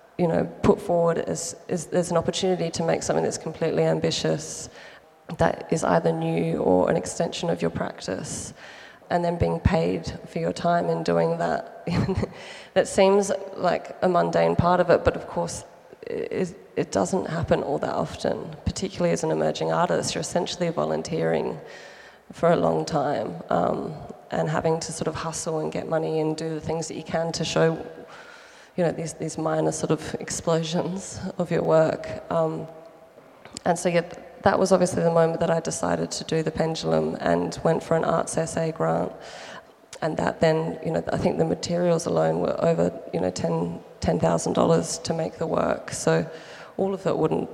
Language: English